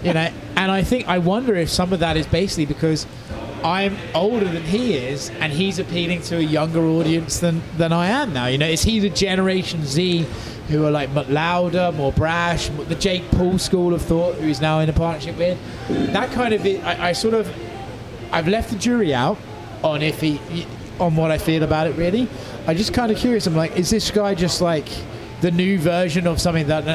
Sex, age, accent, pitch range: male, 30-49, British, 140-175 Hz